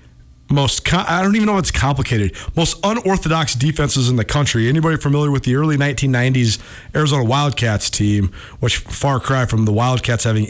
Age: 40-59